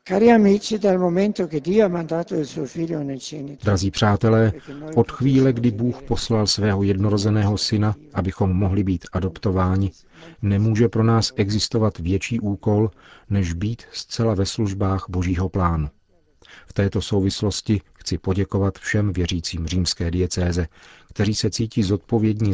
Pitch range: 95-110 Hz